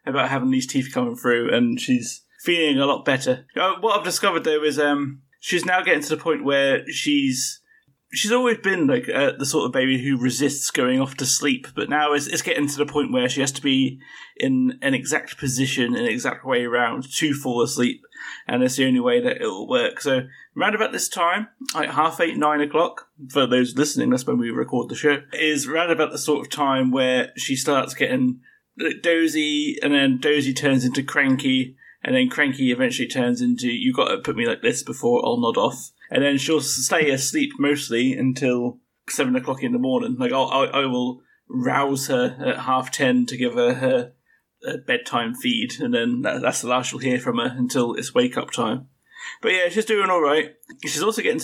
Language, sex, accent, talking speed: English, male, British, 210 wpm